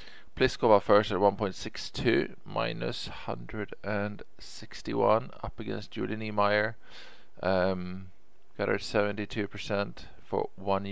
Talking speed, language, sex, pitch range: 90 wpm, English, male, 95-105 Hz